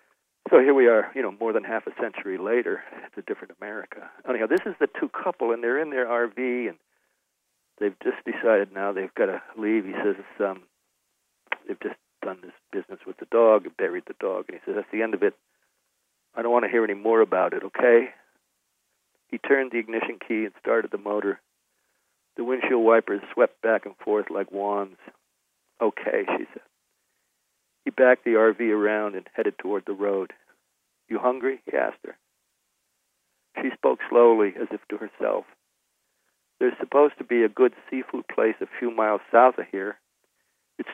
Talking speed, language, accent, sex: 185 wpm, English, American, male